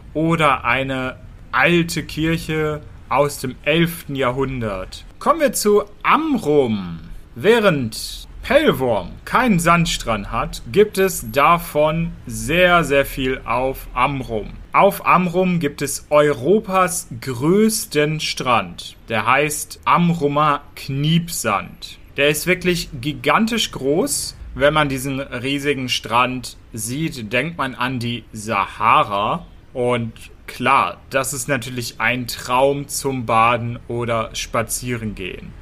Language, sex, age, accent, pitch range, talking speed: German, male, 40-59, German, 120-160 Hz, 105 wpm